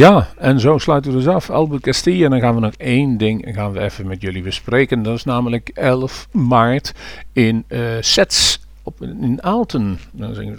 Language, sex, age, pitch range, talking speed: Dutch, male, 50-69, 105-130 Hz, 200 wpm